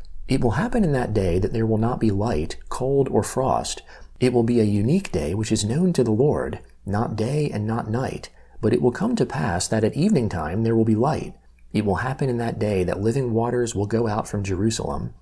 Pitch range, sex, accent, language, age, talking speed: 105-125 Hz, male, American, English, 40-59, 235 wpm